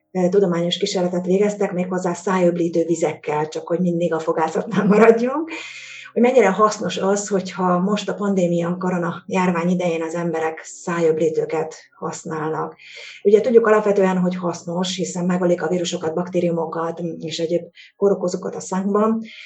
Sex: female